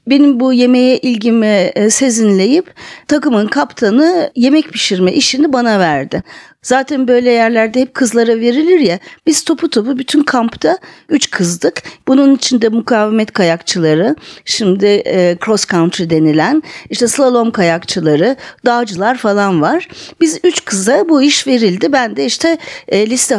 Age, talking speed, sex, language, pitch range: 40-59, 130 wpm, female, Turkish, 200-280 Hz